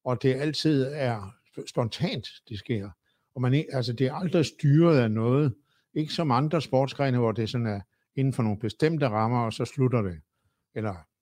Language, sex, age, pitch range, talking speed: Danish, male, 60-79, 115-150 Hz, 180 wpm